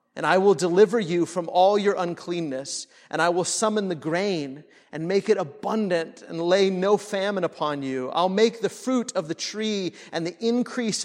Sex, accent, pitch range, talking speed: male, American, 160-210 Hz, 190 wpm